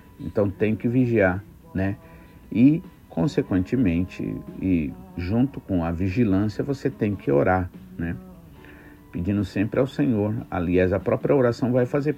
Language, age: Portuguese, 50-69